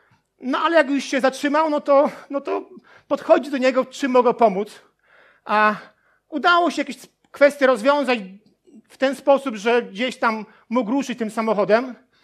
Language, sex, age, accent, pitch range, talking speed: Polish, male, 40-59, native, 230-280 Hz, 155 wpm